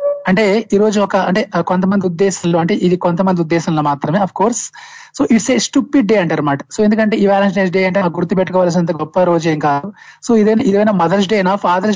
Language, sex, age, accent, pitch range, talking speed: Telugu, male, 20-39, native, 180-220 Hz, 190 wpm